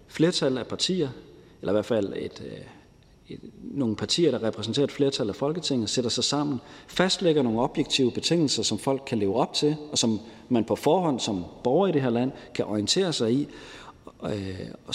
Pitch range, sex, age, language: 110-145 Hz, male, 40-59, Danish